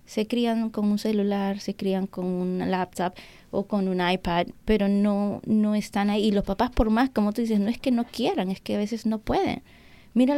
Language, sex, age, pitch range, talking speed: English, female, 20-39, 180-220 Hz, 225 wpm